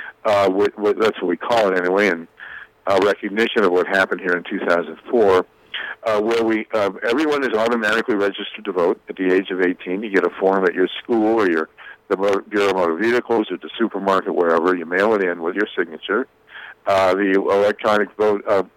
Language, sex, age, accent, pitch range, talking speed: English, male, 60-79, American, 95-115 Hz, 180 wpm